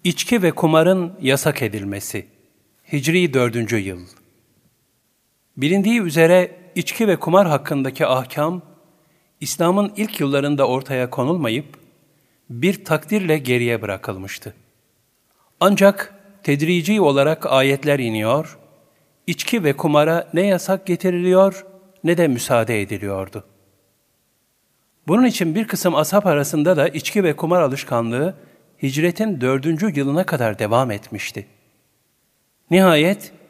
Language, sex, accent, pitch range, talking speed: Turkish, male, native, 120-175 Hz, 100 wpm